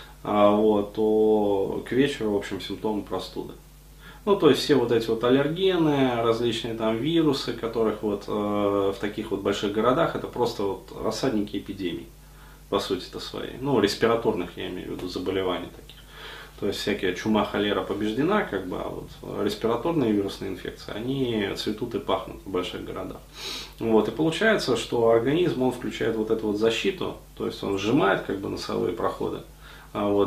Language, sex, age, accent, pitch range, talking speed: Russian, male, 20-39, native, 100-120 Hz, 155 wpm